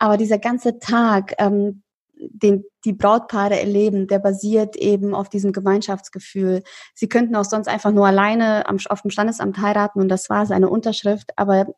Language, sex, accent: German, female, German